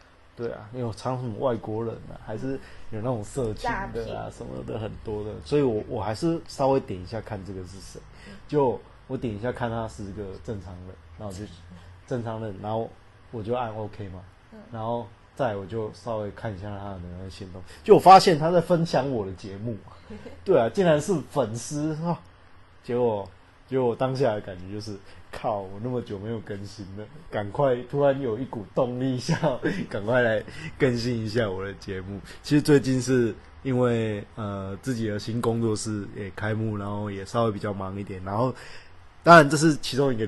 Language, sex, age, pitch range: Chinese, male, 20-39, 100-125 Hz